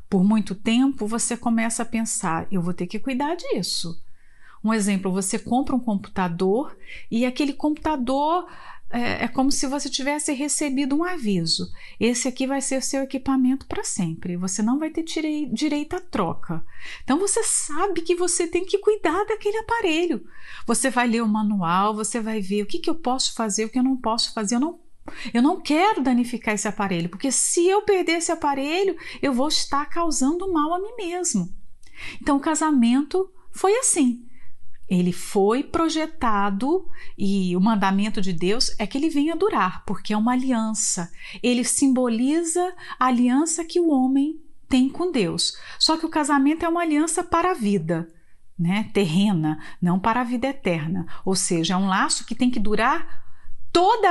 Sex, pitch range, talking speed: female, 210-320 Hz, 175 wpm